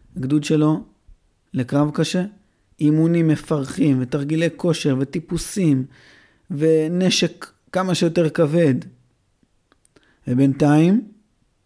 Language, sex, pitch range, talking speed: Hebrew, male, 125-155 Hz, 70 wpm